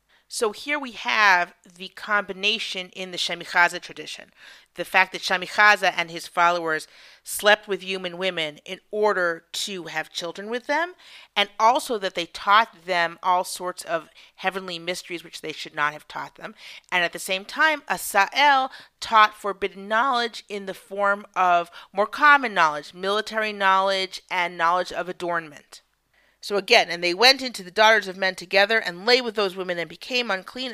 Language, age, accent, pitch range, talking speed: English, 40-59, American, 180-255 Hz, 170 wpm